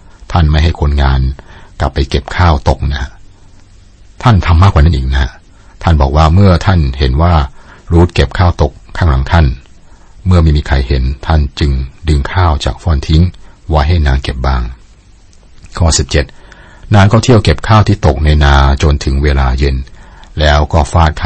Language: Thai